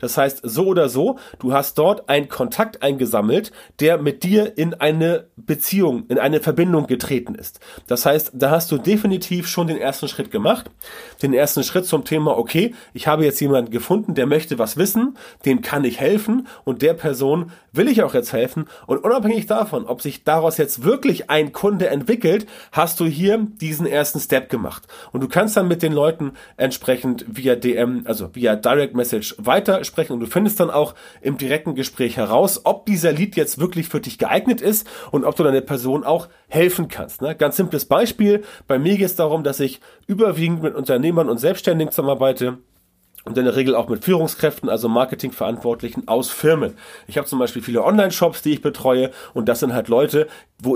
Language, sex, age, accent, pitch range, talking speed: German, male, 30-49, German, 135-180 Hz, 190 wpm